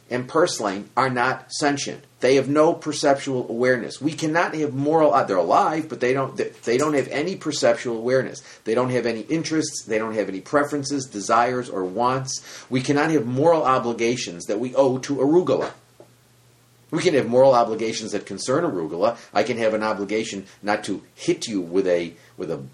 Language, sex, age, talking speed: English, male, 40-59, 180 wpm